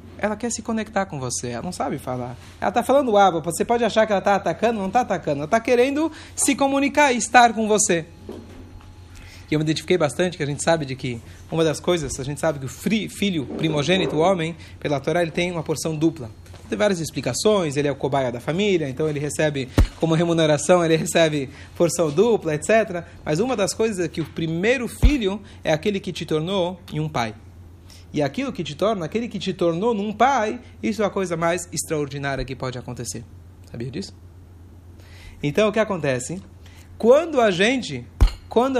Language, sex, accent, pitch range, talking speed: Portuguese, male, Brazilian, 130-195 Hz, 200 wpm